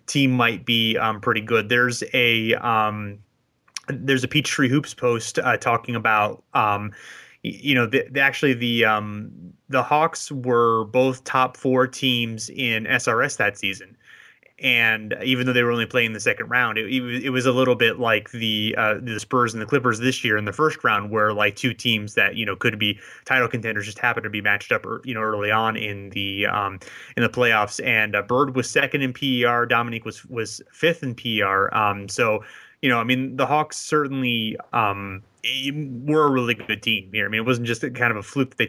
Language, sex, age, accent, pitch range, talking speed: English, male, 30-49, American, 110-130 Hz, 205 wpm